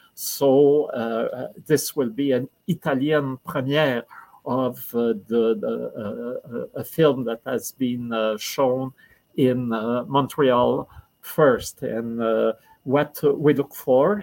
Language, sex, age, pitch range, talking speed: French, male, 50-69, 120-145 Hz, 125 wpm